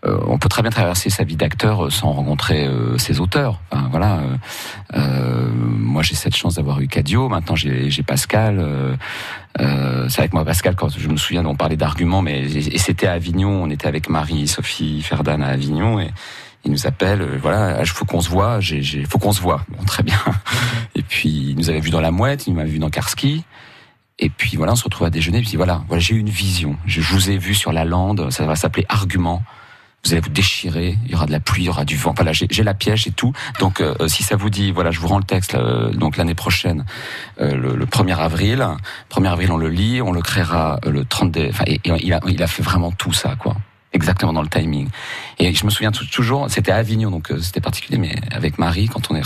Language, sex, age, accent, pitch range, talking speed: French, male, 40-59, French, 80-105 Hz, 250 wpm